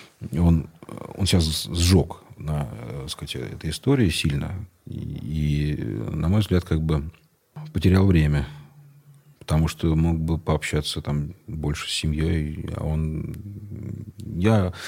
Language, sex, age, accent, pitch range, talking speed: Russian, male, 40-59, native, 80-100 Hz, 115 wpm